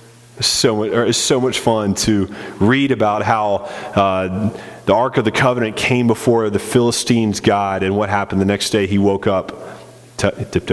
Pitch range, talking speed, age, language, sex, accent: 105-130 Hz, 170 wpm, 30-49, English, male, American